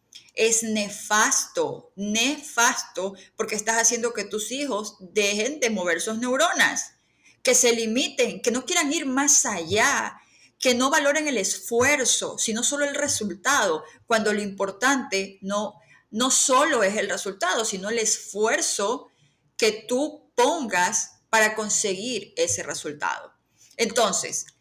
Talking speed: 125 wpm